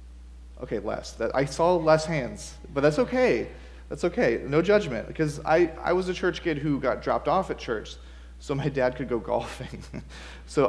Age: 30-49